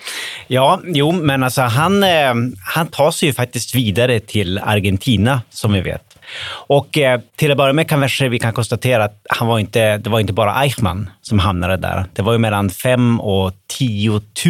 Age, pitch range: 30-49, 100-130 Hz